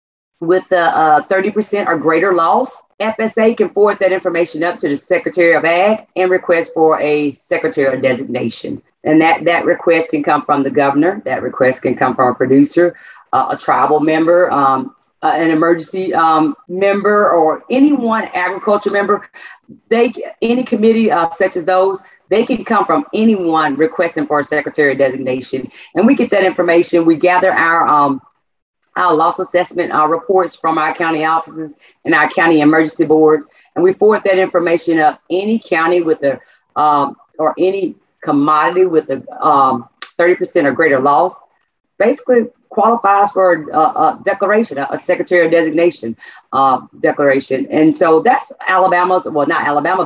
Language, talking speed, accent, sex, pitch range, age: English, 170 wpm, American, female, 155-190 Hz, 40-59